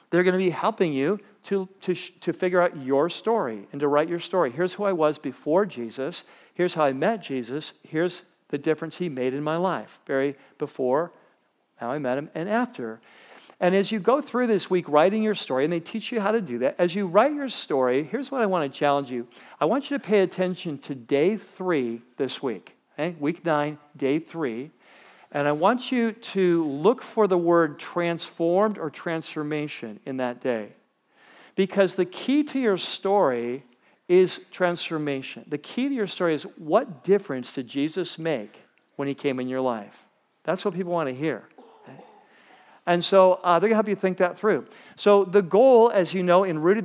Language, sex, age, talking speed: English, male, 50-69, 195 wpm